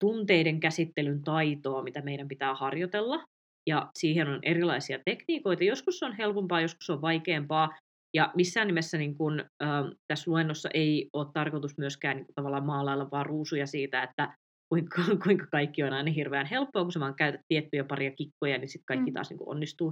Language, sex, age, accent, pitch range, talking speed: Finnish, female, 20-39, native, 140-175 Hz, 180 wpm